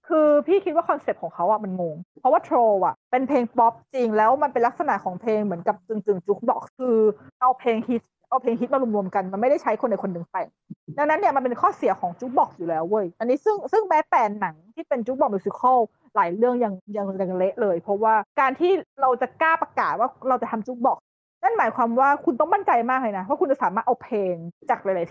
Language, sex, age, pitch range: Thai, female, 20-39, 200-265 Hz